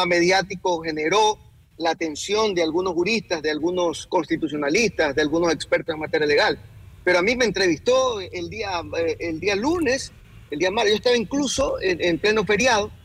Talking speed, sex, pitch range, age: 165 wpm, male, 180-300 Hz, 30-49